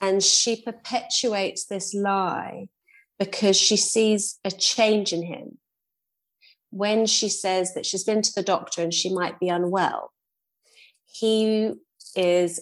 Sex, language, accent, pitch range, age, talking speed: female, English, British, 180-220 Hz, 30-49, 135 wpm